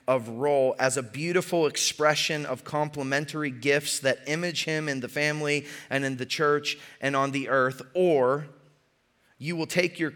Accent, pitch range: American, 135-160 Hz